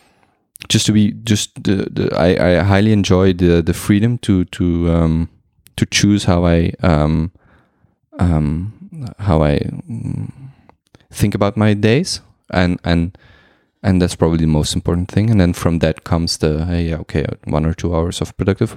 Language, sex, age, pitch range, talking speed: Dutch, male, 20-39, 85-105 Hz, 165 wpm